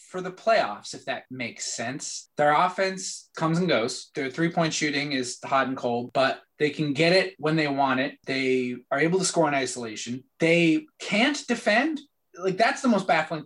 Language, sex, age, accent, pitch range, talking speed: English, male, 20-39, American, 135-190 Hz, 190 wpm